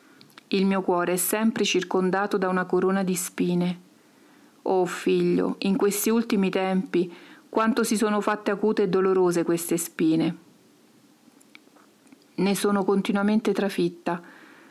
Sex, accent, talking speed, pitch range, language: female, native, 120 wpm, 185-225 Hz, Italian